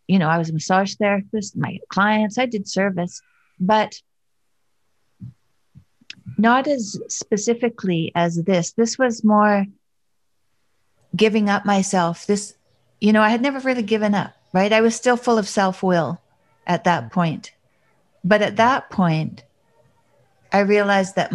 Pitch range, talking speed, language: 160-205 Hz, 140 wpm, English